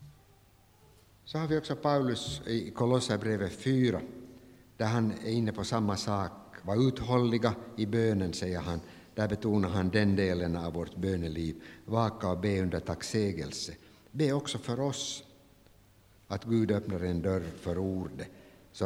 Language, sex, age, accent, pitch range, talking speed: Swedish, male, 60-79, Finnish, 95-115 Hz, 150 wpm